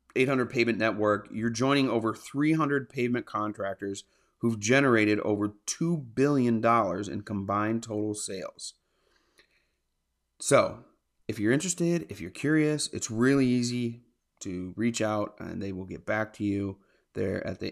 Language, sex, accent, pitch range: English, male, American, 105-125 Hz